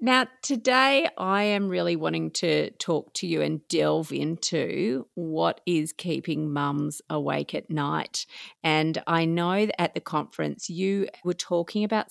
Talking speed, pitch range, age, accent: 155 wpm, 150-195 Hz, 40-59, Australian